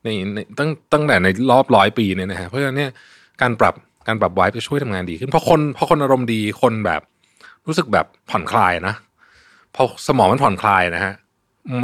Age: 20-39